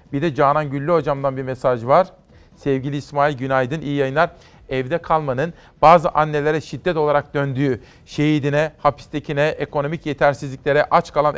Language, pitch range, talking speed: Turkish, 140-165 Hz, 135 wpm